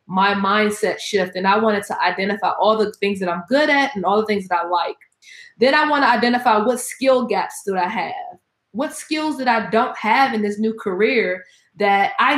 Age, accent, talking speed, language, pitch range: 20-39, American, 220 wpm, English, 205-265 Hz